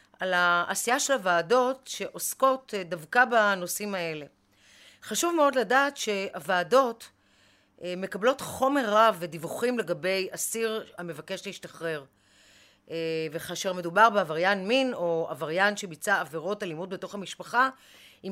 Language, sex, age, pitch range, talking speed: Hebrew, female, 40-59, 175-230 Hz, 105 wpm